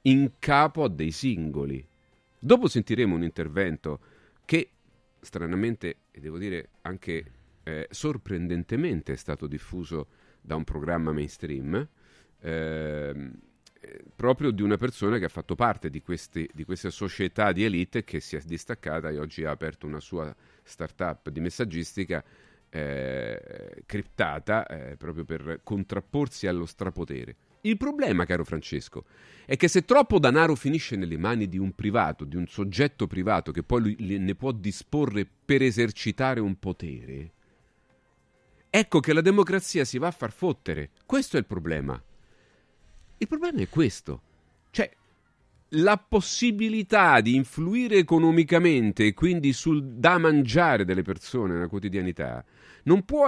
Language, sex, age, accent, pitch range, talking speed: Italian, male, 40-59, native, 80-135 Hz, 140 wpm